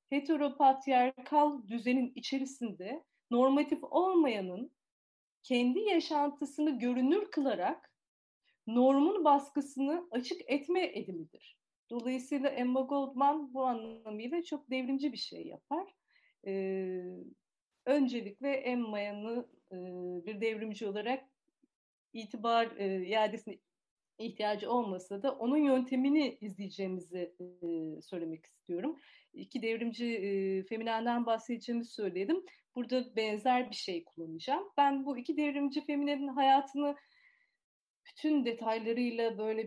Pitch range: 220-290 Hz